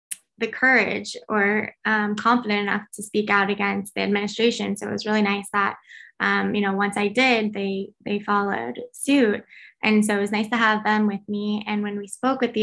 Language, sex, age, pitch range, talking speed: English, female, 10-29, 205-225 Hz, 210 wpm